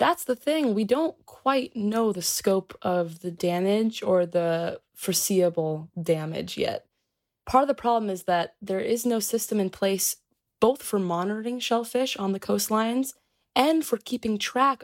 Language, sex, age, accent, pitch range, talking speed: English, female, 20-39, American, 175-245 Hz, 160 wpm